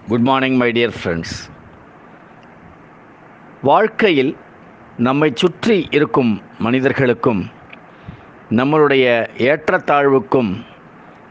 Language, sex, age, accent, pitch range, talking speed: Tamil, male, 50-69, native, 125-170 Hz, 60 wpm